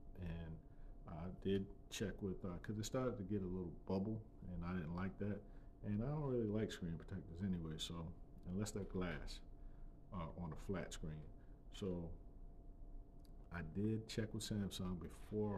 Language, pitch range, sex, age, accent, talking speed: English, 80-100 Hz, male, 40-59, American, 165 wpm